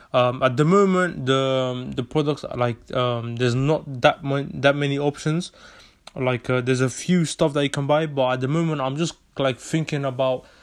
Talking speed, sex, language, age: 205 wpm, male, English, 20-39